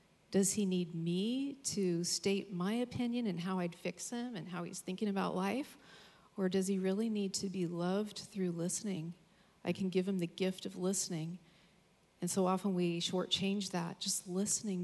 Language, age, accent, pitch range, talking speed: English, 40-59, American, 180-210 Hz, 180 wpm